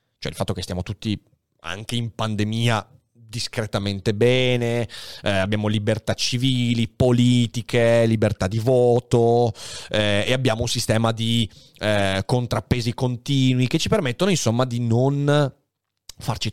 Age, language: 30-49, Italian